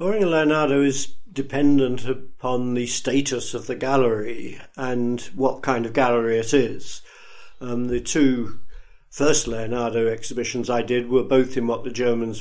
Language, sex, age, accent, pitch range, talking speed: English, male, 50-69, British, 120-135 Hz, 155 wpm